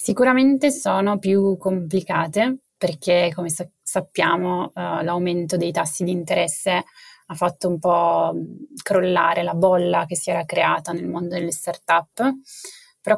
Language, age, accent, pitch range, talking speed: Italian, 20-39, native, 175-200 Hz, 140 wpm